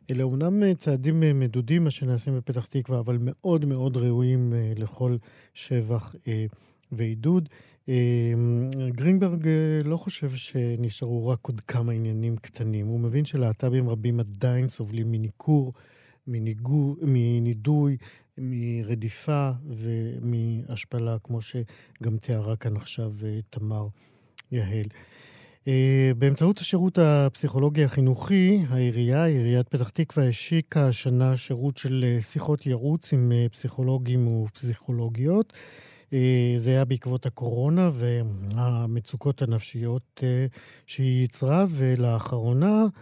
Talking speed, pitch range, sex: 95 wpm, 120-140 Hz, male